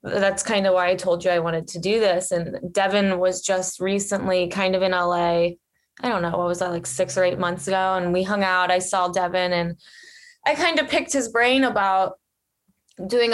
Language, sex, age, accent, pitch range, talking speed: English, female, 20-39, American, 180-215 Hz, 220 wpm